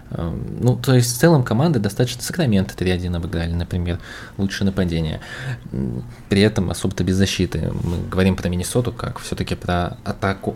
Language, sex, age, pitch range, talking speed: Russian, male, 20-39, 100-125 Hz, 150 wpm